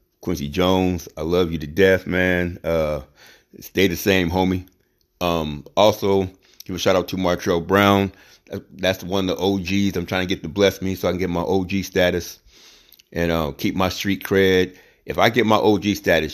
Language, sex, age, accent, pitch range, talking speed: English, male, 30-49, American, 80-95 Hz, 195 wpm